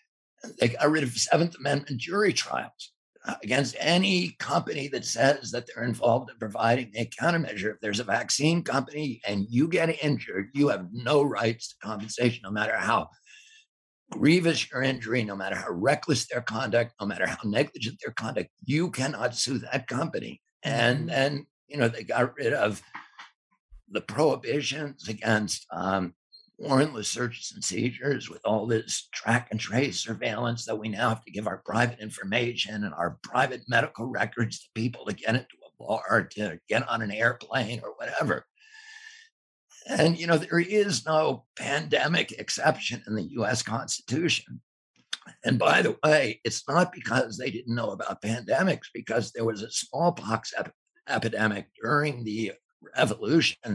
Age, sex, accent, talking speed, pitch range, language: 60-79, male, American, 160 wpm, 110-150 Hz, English